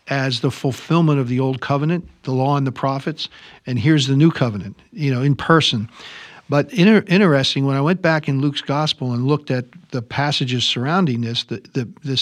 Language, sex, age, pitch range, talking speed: English, male, 50-69, 130-155 Hz, 200 wpm